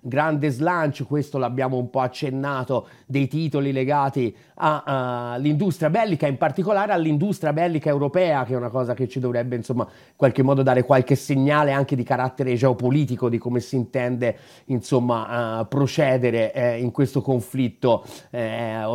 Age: 30-49